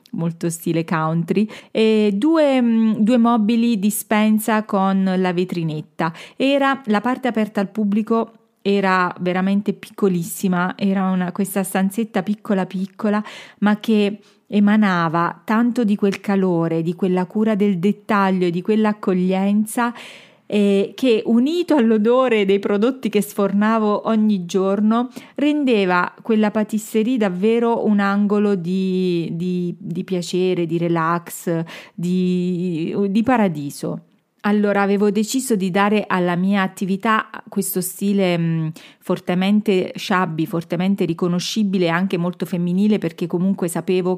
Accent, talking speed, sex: native, 115 wpm, female